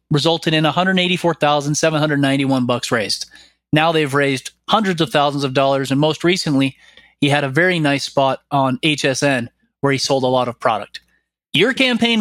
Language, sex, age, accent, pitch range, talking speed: English, male, 30-49, American, 140-205 Hz, 160 wpm